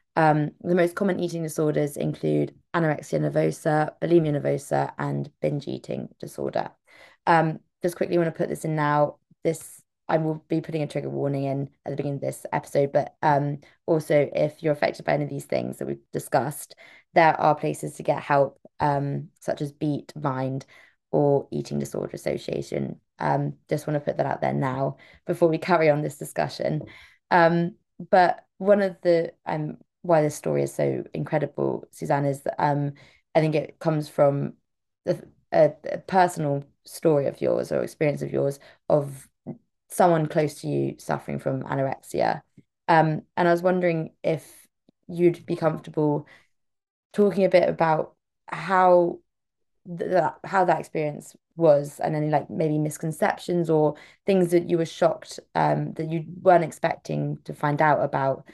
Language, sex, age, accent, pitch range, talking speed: English, female, 20-39, British, 135-170 Hz, 165 wpm